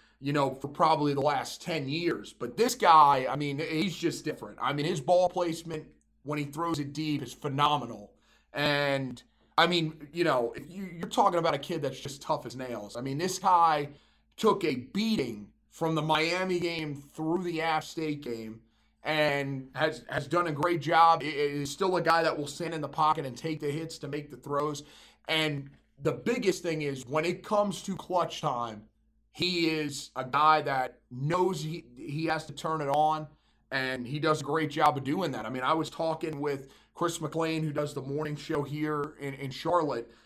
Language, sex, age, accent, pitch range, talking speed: English, male, 30-49, American, 140-170 Hz, 205 wpm